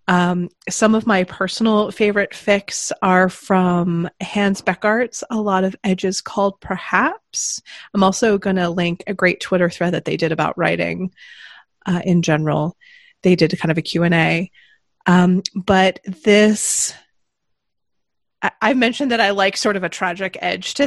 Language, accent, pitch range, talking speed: English, American, 180-210 Hz, 160 wpm